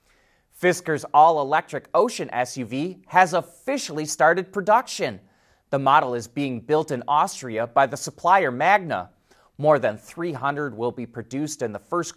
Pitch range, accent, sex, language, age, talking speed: 120-160 Hz, American, male, English, 30-49, 140 wpm